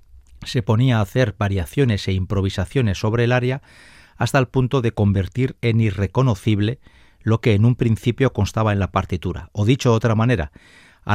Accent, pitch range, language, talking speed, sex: Spanish, 100-130 Hz, Spanish, 170 wpm, male